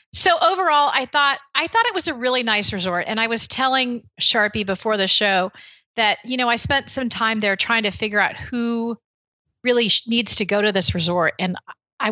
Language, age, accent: English, 40-59, American